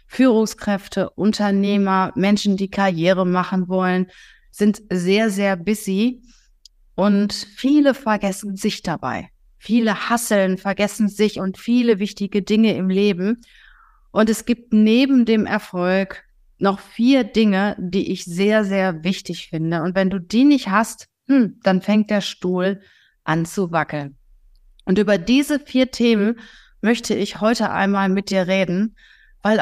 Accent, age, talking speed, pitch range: German, 30-49, 135 wpm, 185-220 Hz